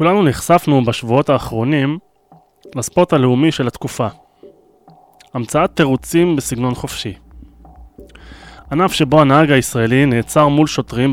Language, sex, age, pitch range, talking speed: Hebrew, male, 20-39, 115-155 Hz, 100 wpm